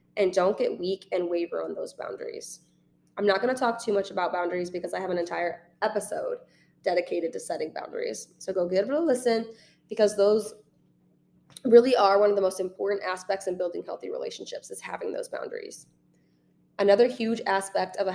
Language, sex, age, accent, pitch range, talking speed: English, female, 20-39, American, 185-225 Hz, 185 wpm